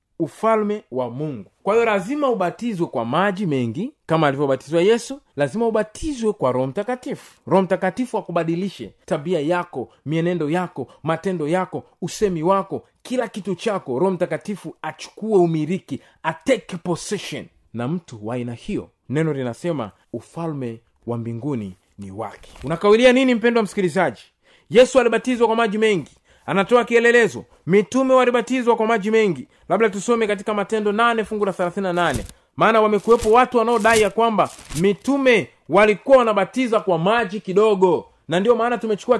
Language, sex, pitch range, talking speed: Swahili, male, 170-225 Hz, 135 wpm